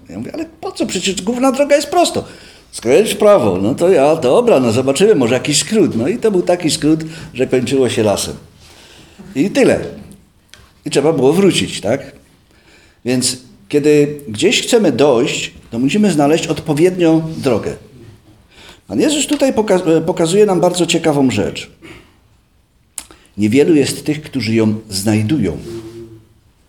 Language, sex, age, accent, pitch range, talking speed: Polish, male, 50-69, native, 105-165 Hz, 140 wpm